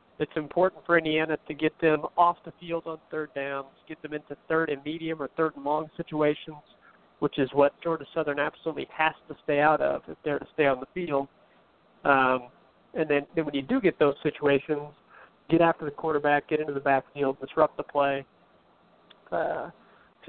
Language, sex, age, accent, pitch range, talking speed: English, male, 40-59, American, 140-165 Hz, 190 wpm